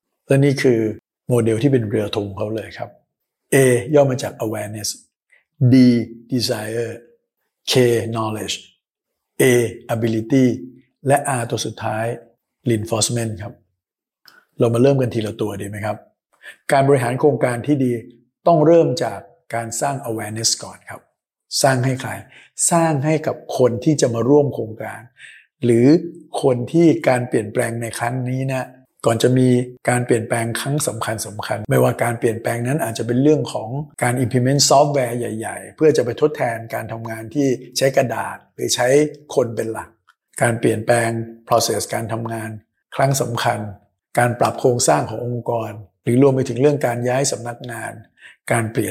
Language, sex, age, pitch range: Thai, male, 60-79, 115-135 Hz